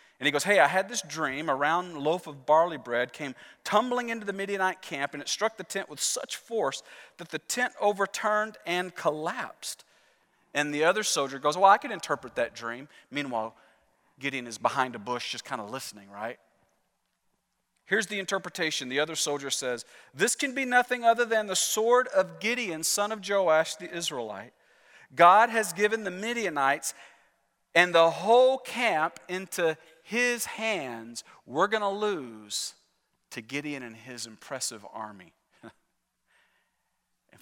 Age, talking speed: 40-59, 165 wpm